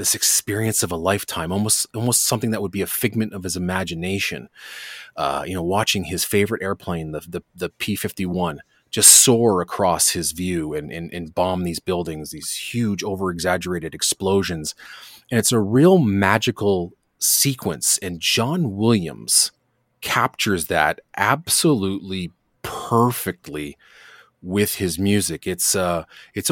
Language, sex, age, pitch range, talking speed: English, male, 30-49, 90-120 Hz, 145 wpm